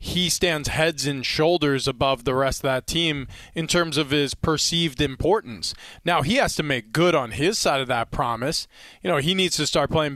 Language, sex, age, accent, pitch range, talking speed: English, male, 20-39, American, 140-170 Hz, 215 wpm